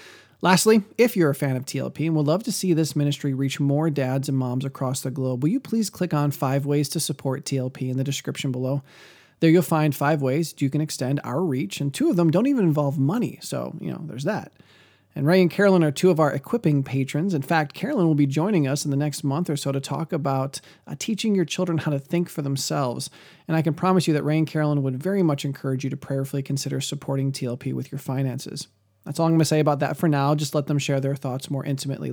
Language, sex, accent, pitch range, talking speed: English, male, American, 135-165 Hz, 250 wpm